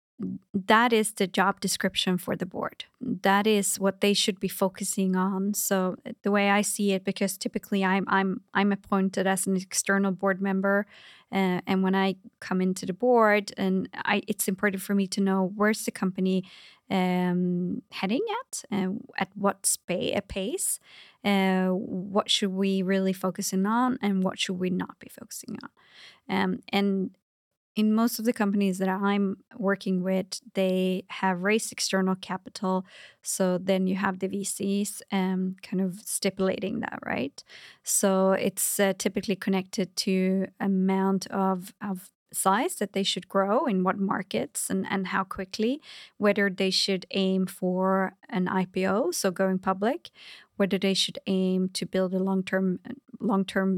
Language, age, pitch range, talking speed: English, 20-39, 190-210 Hz, 160 wpm